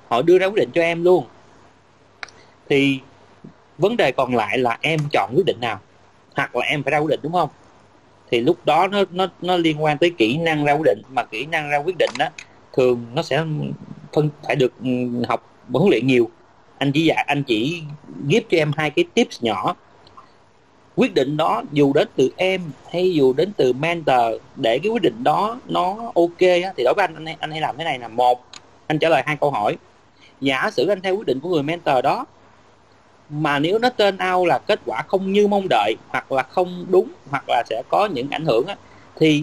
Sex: male